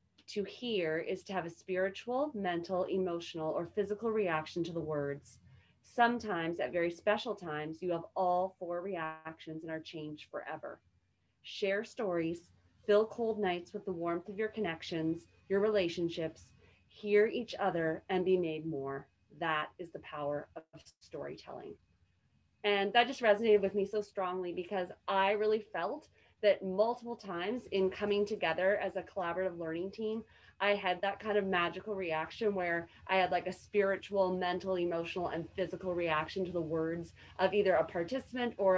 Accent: American